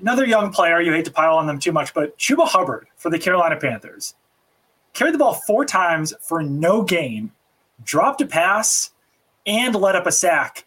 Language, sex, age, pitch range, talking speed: English, male, 20-39, 145-190 Hz, 190 wpm